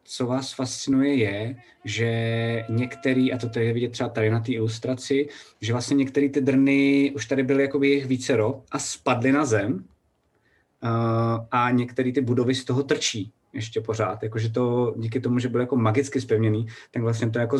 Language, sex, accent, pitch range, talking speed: Czech, male, native, 110-125 Hz, 175 wpm